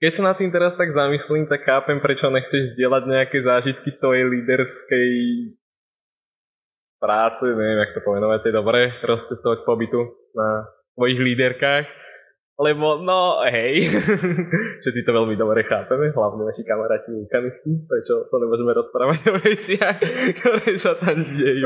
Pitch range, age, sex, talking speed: 125-155 Hz, 20-39, male, 140 wpm